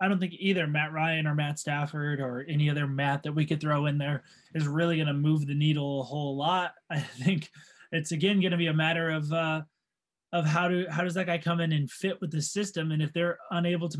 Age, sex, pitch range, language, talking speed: 20-39, male, 150-185 Hz, English, 255 wpm